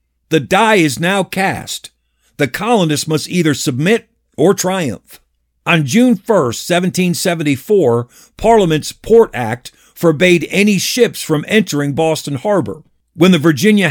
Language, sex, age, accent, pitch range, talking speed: English, male, 50-69, American, 145-190 Hz, 125 wpm